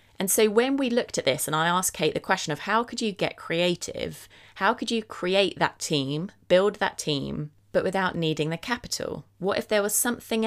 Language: English